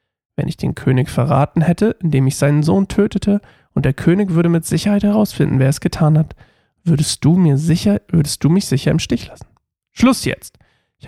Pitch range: 140-175 Hz